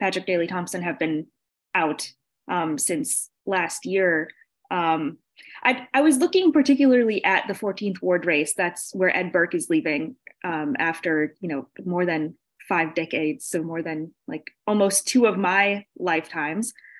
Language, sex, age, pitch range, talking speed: English, female, 20-39, 175-240 Hz, 155 wpm